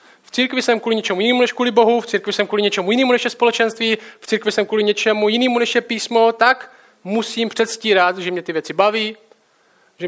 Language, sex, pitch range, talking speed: Czech, male, 185-235 Hz, 215 wpm